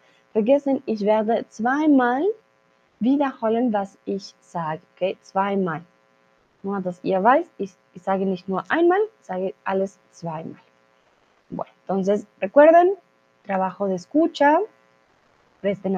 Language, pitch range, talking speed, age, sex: Spanish, 190-275 Hz, 95 wpm, 20-39, female